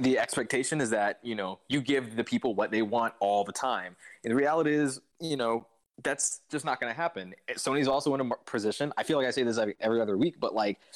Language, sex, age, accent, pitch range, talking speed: English, male, 20-39, American, 115-145 Hz, 245 wpm